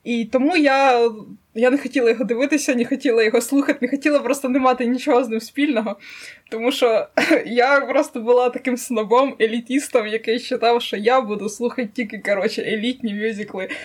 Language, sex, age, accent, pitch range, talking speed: Ukrainian, female, 20-39, native, 230-280 Hz, 170 wpm